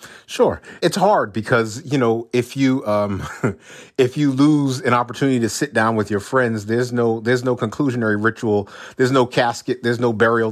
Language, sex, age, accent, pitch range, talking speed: English, male, 40-59, American, 105-125 Hz, 185 wpm